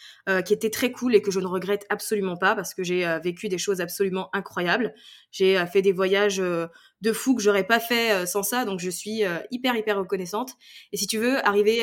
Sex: female